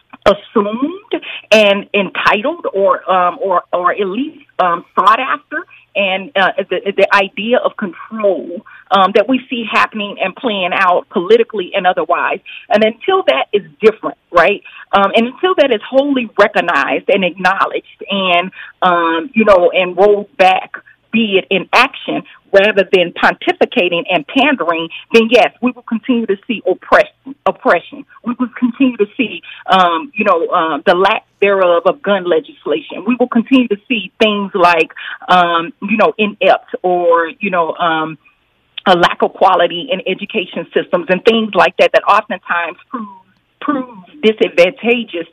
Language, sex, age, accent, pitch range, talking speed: English, female, 40-59, American, 185-250 Hz, 150 wpm